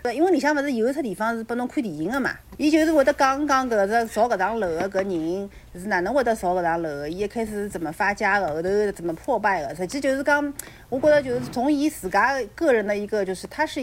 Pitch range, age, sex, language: 175-240 Hz, 40-59, female, Chinese